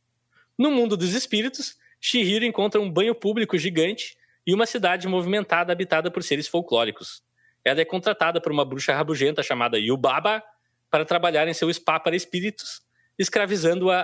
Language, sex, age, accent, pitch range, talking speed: Portuguese, male, 20-39, Brazilian, 140-185 Hz, 150 wpm